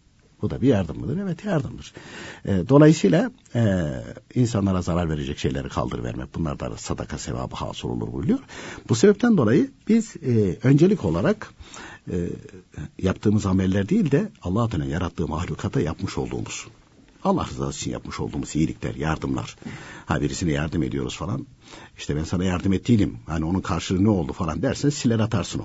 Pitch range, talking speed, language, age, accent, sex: 85-125 Hz, 155 wpm, Turkish, 60-79, native, male